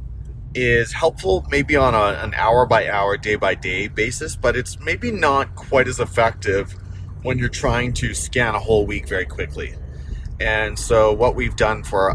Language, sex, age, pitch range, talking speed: English, male, 30-49, 95-120 Hz, 185 wpm